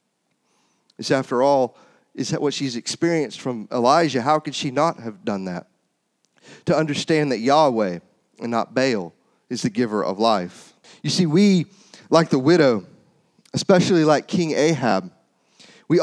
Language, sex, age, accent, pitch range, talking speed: English, male, 30-49, American, 135-170 Hz, 145 wpm